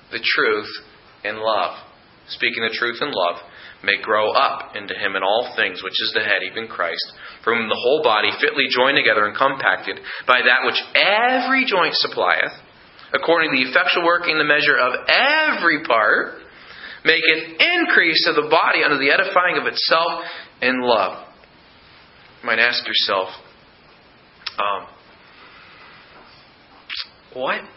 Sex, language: male, English